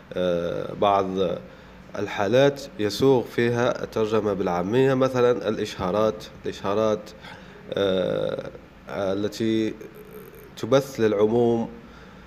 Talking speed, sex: 60 wpm, male